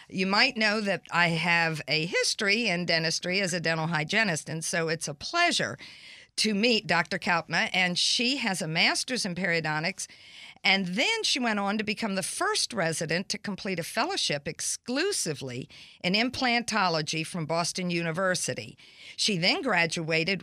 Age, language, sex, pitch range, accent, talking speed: 50-69, English, female, 160-230 Hz, American, 155 wpm